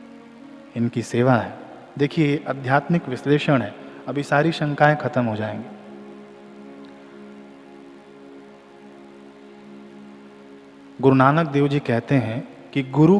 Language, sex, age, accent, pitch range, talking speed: Hindi, male, 40-59, native, 115-170 Hz, 95 wpm